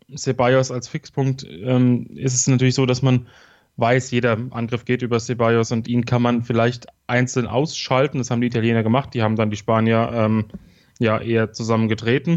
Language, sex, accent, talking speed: German, male, German, 180 wpm